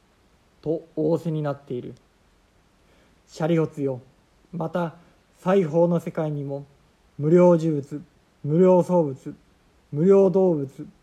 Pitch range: 145-175 Hz